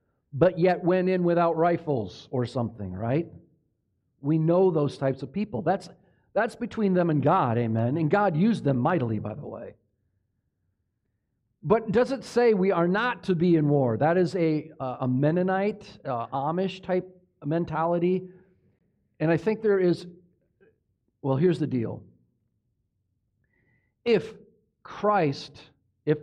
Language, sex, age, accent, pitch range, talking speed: English, male, 50-69, American, 115-165 Hz, 140 wpm